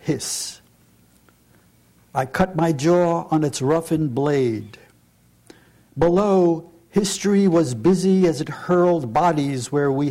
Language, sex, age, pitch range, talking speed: English, male, 60-79, 140-175 Hz, 115 wpm